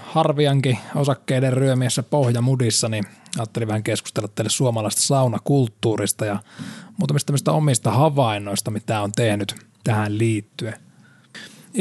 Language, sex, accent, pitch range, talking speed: Finnish, male, native, 110-140 Hz, 105 wpm